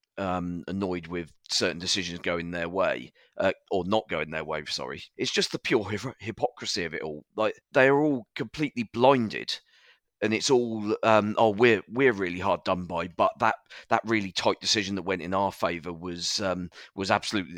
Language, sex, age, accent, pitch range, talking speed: English, male, 30-49, British, 85-105 Hz, 190 wpm